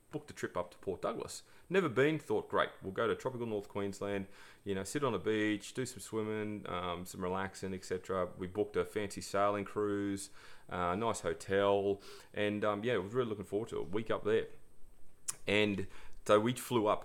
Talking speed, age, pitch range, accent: 210 wpm, 30-49, 90-105 Hz, Australian